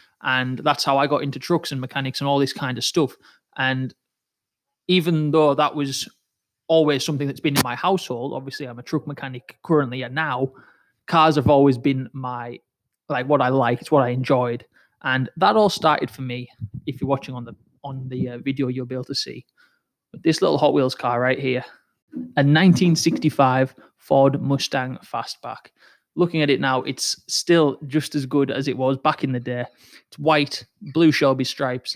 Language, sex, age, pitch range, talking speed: English, male, 20-39, 130-150 Hz, 190 wpm